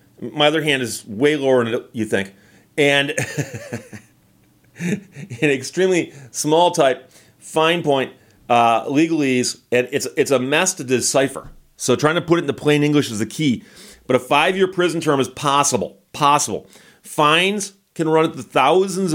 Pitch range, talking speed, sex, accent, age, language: 120-160 Hz, 155 wpm, male, American, 40-59, English